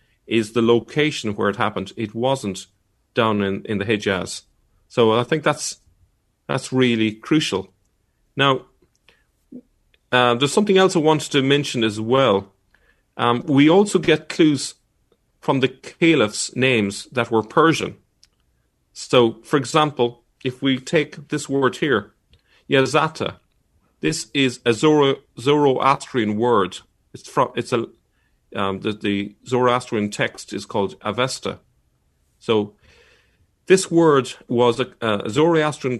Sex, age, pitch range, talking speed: male, 40-59, 105-145 Hz, 130 wpm